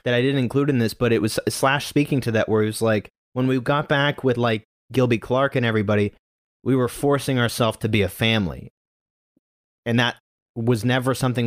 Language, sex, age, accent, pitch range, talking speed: English, male, 30-49, American, 105-140 Hz, 210 wpm